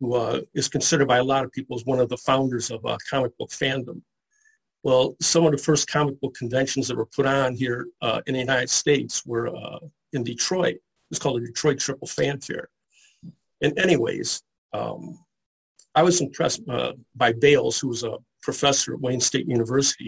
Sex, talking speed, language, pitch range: male, 190 wpm, English, 125-155 Hz